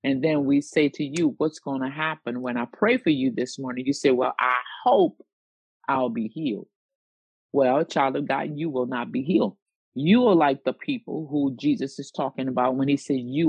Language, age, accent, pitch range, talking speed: English, 50-69, American, 130-165 Hz, 215 wpm